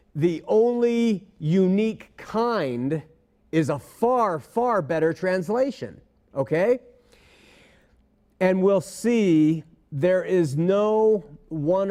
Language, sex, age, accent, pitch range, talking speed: English, male, 40-59, American, 140-180 Hz, 90 wpm